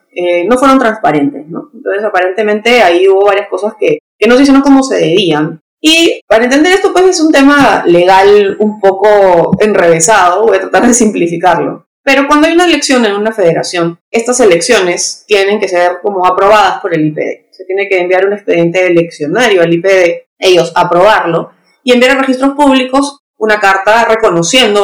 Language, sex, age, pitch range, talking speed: English, female, 30-49, 170-250 Hz, 175 wpm